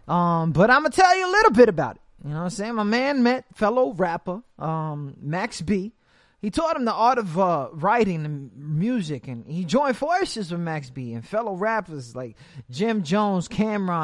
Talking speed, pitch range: 210 wpm, 170-245 Hz